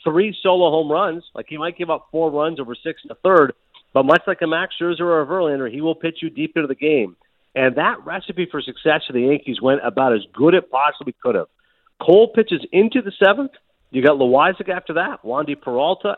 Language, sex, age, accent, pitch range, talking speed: English, male, 50-69, American, 135-175 Hz, 225 wpm